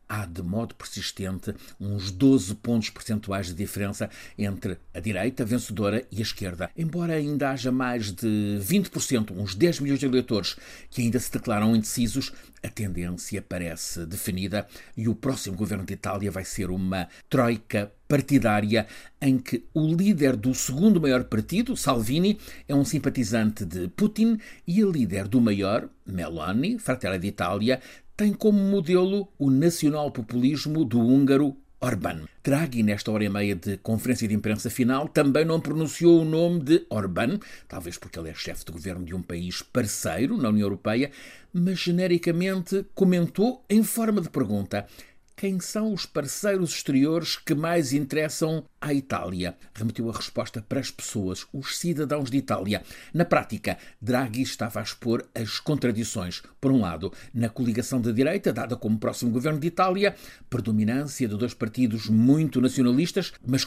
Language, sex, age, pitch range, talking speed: Portuguese, male, 50-69, 105-155 Hz, 155 wpm